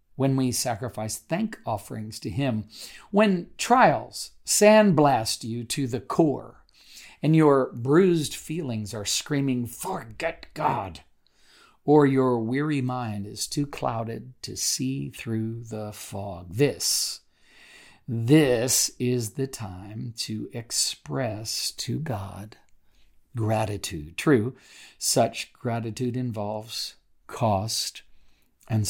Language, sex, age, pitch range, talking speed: English, male, 50-69, 105-135 Hz, 105 wpm